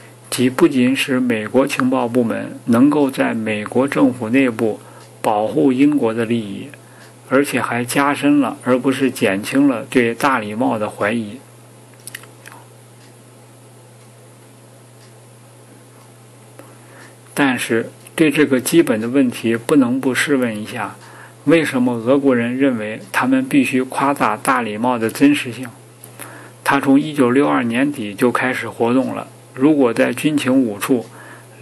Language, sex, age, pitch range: Chinese, male, 50-69, 115-145 Hz